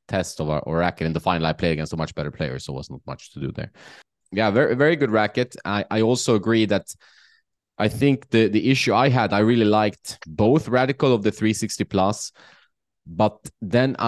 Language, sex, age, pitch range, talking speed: English, male, 20-39, 90-115 Hz, 220 wpm